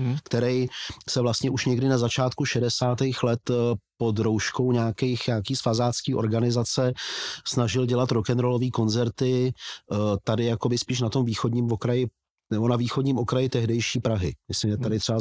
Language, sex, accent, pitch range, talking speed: Czech, male, native, 115-135 Hz, 145 wpm